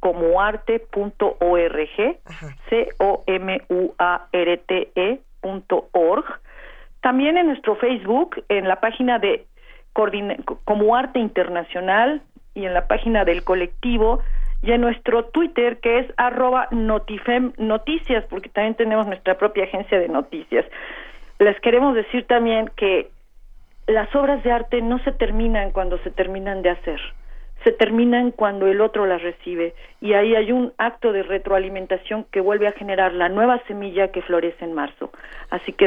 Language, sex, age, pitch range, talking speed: Spanish, female, 40-59, 185-240 Hz, 140 wpm